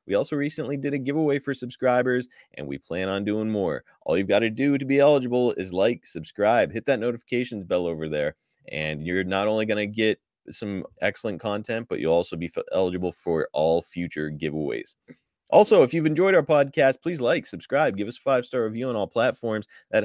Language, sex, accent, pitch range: English, male, American, 90-120 Hz